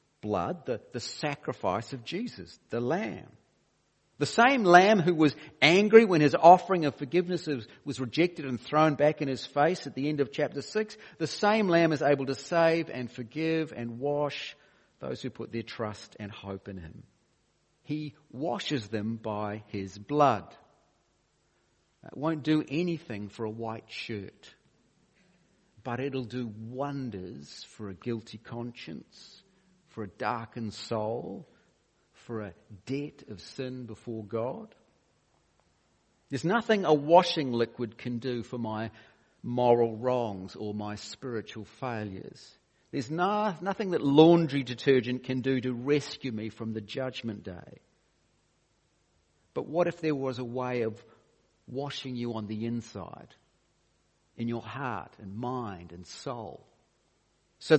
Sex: male